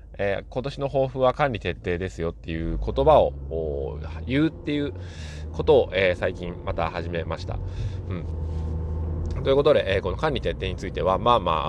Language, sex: Japanese, male